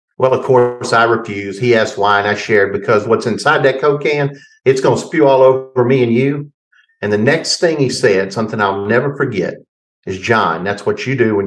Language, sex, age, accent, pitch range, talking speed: English, male, 50-69, American, 105-140 Hz, 225 wpm